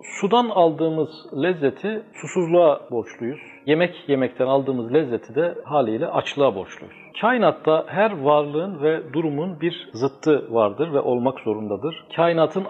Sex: male